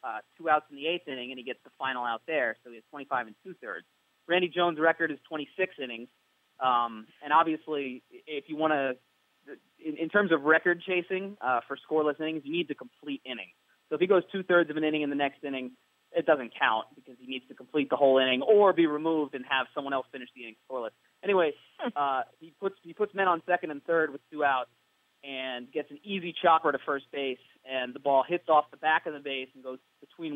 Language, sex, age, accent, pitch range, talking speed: English, male, 30-49, American, 130-165 Hz, 230 wpm